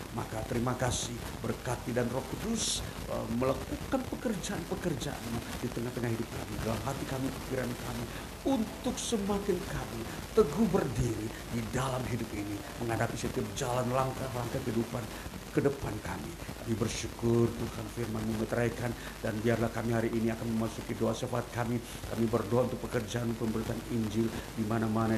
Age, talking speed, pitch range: 50-69, 140 wpm, 110-125 Hz